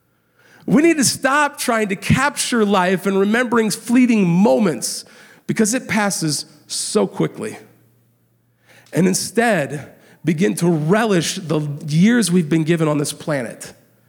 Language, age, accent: English, 50-69, American